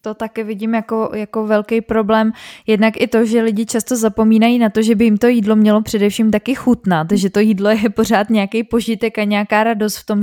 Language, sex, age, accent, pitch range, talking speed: Czech, female, 20-39, native, 210-225 Hz, 215 wpm